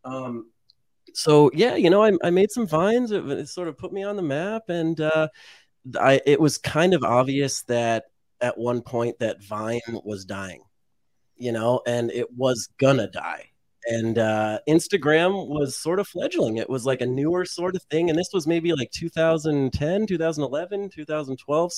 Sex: male